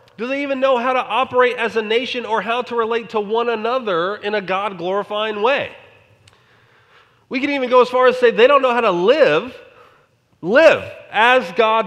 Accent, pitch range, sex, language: American, 170-245 Hz, male, English